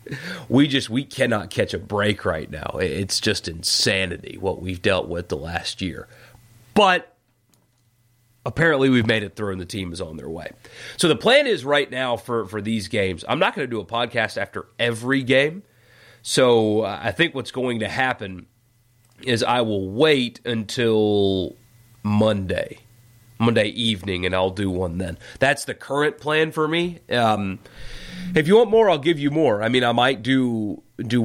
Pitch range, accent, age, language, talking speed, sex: 110-135 Hz, American, 30-49, English, 180 wpm, male